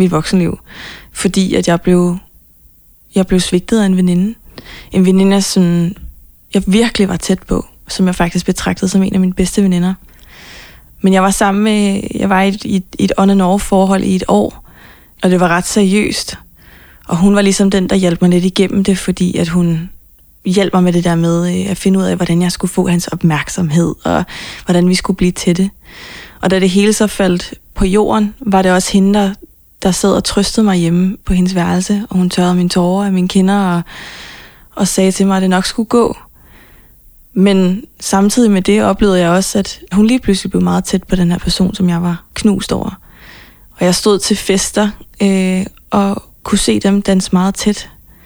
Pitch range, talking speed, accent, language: 180-200 Hz, 200 wpm, native, Danish